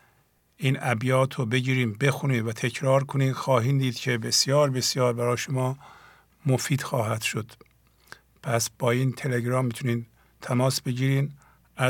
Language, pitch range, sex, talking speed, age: English, 120-140 Hz, male, 125 wpm, 50-69